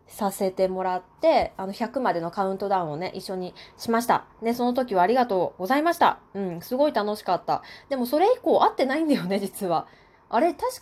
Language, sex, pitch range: Japanese, female, 185-265 Hz